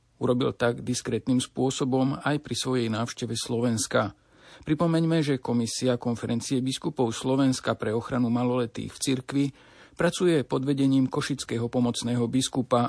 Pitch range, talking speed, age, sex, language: 115-140 Hz, 120 wpm, 50-69, male, Slovak